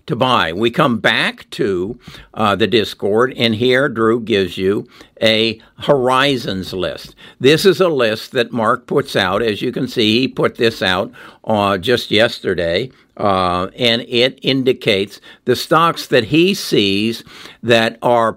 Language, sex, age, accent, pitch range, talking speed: English, male, 60-79, American, 105-130 Hz, 155 wpm